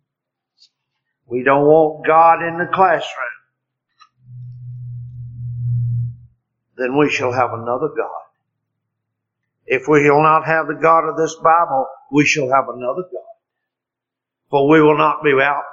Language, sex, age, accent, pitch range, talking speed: English, male, 50-69, American, 120-165 Hz, 130 wpm